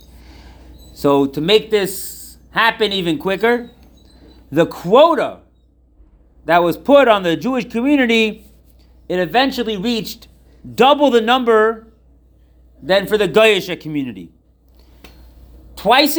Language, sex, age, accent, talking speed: English, male, 40-59, American, 105 wpm